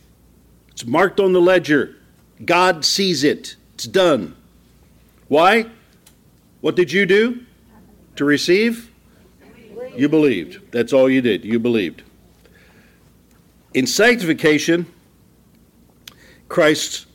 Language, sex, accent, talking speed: English, male, American, 100 wpm